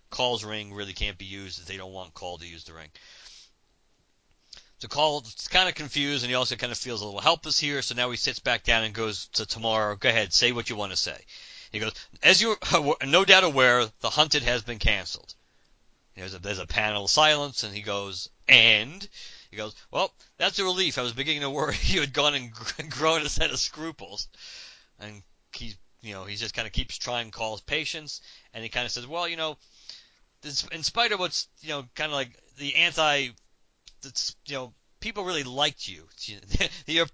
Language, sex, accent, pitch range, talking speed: English, male, American, 110-145 Hz, 215 wpm